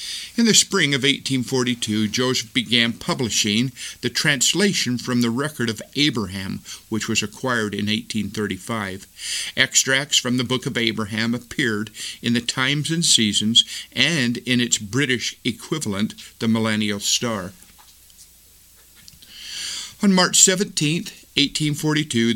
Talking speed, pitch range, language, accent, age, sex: 120 wpm, 110-140 Hz, English, American, 50-69, male